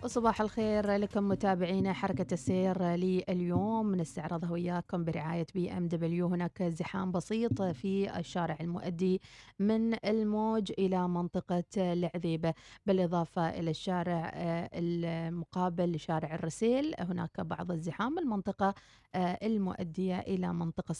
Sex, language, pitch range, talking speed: female, Arabic, 175-210 Hz, 105 wpm